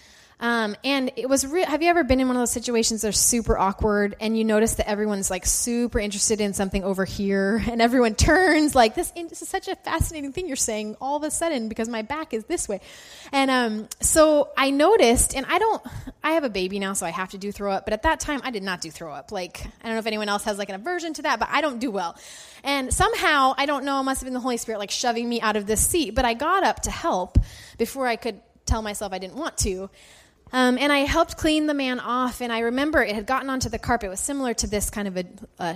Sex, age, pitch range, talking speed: female, 10-29, 195-265 Hz, 270 wpm